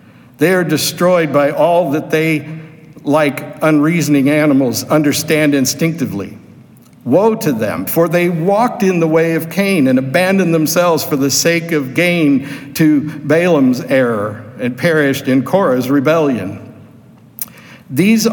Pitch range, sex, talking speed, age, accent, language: 150-170 Hz, male, 130 wpm, 60-79, American, English